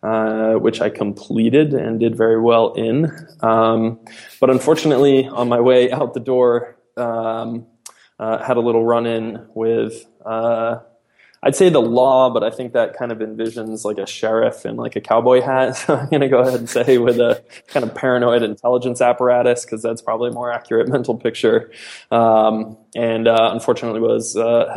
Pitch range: 115-125 Hz